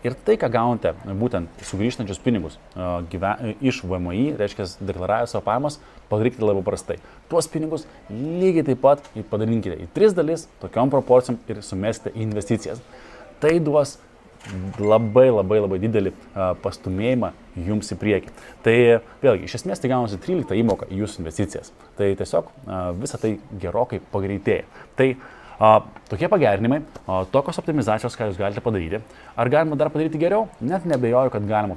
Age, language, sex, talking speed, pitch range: 20-39, English, male, 145 wpm, 100-130 Hz